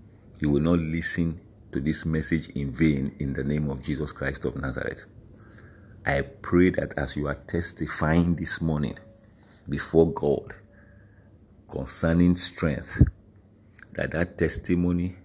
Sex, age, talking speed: male, 50-69, 130 wpm